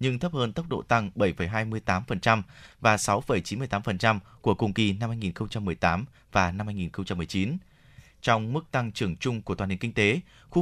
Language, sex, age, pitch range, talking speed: Vietnamese, male, 20-39, 100-125 Hz, 160 wpm